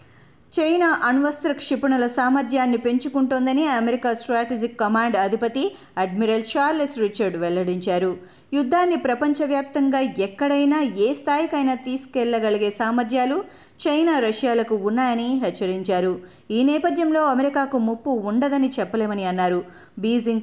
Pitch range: 225-290 Hz